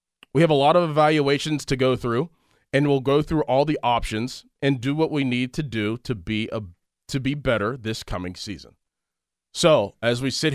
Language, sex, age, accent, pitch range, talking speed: English, male, 30-49, American, 125-165 Hz, 205 wpm